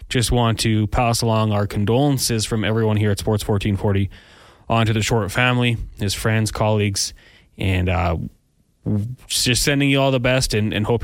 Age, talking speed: 20-39, 175 wpm